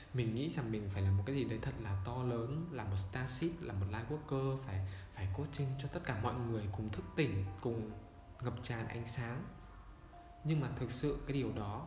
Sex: male